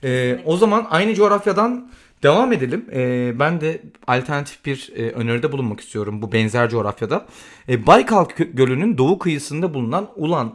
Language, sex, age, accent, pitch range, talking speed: Turkish, male, 40-59, native, 125-170 Hz, 140 wpm